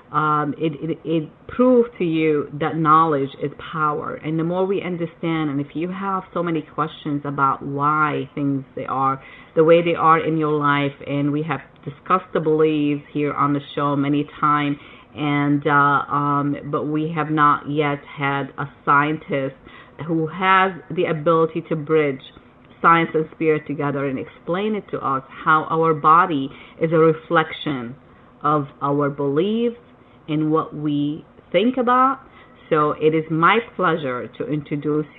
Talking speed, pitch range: 160 wpm, 145-165 Hz